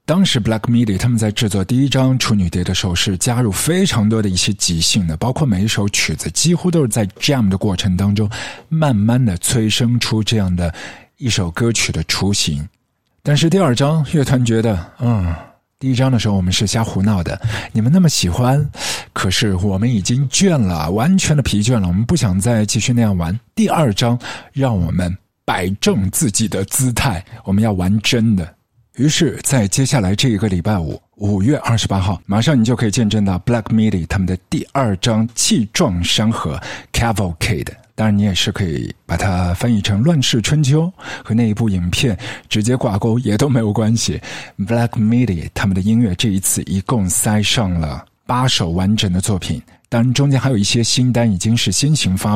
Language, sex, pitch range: Chinese, male, 95-125 Hz